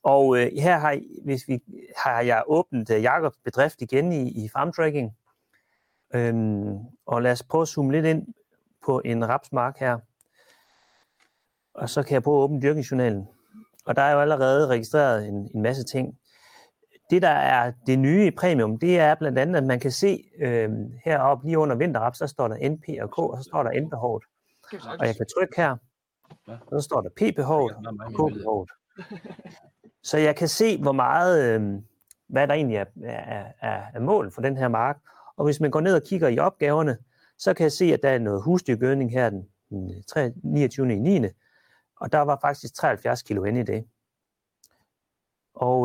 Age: 30-49